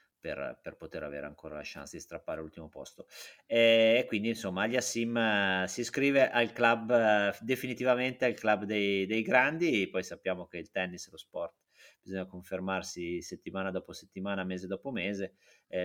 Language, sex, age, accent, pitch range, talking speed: Italian, male, 30-49, native, 90-115 Hz, 165 wpm